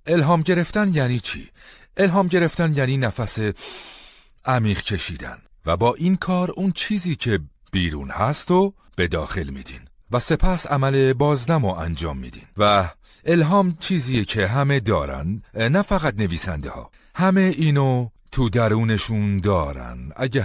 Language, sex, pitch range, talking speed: Persian, male, 95-150 Hz, 135 wpm